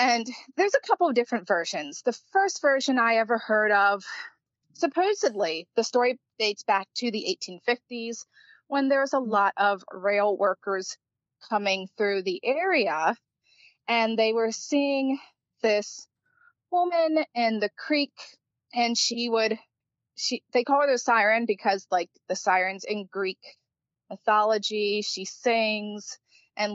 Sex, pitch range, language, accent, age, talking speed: female, 200-245 Hz, English, American, 30-49, 135 wpm